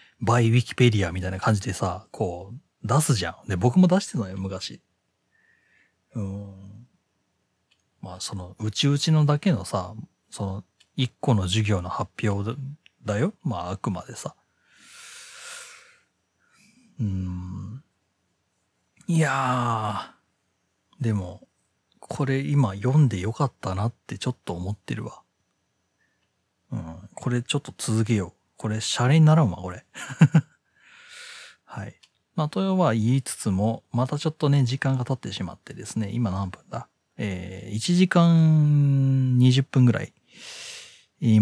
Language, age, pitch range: Japanese, 40-59, 100-135 Hz